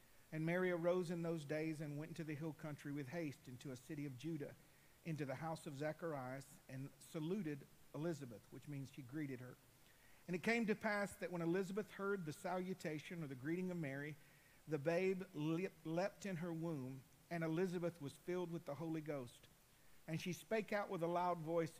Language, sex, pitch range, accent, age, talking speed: English, male, 140-175 Hz, American, 50-69, 195 wpm